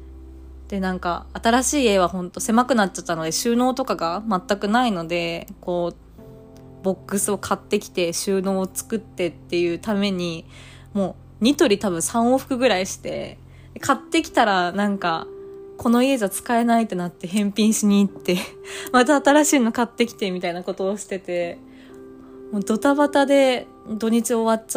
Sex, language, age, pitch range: female, Japanese, 20-39, 155-210 Hz